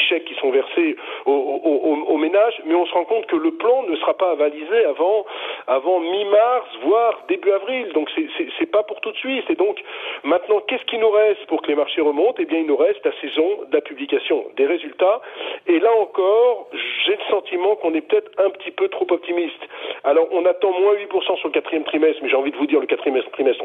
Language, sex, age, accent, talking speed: French, male, 40-59, French, 230 wpm